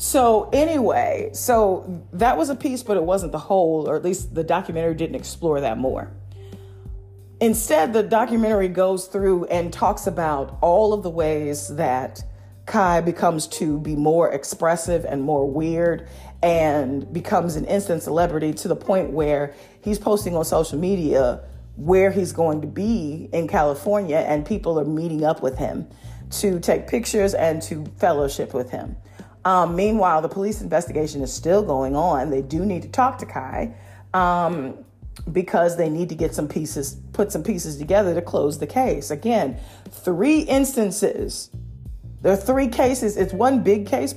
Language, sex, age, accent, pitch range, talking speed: English, female, 40-59, American, 145-200 Hz, 165 wpm